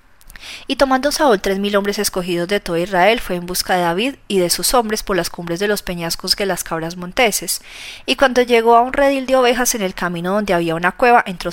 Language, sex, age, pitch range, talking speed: Spanish, female, 30-49, 180-225 Hz, 235 wpm